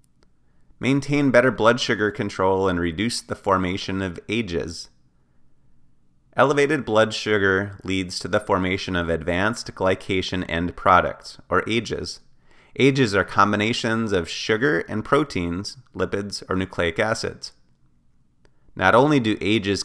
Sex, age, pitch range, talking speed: male, 30-49, 85-110 Hz, 120 wpm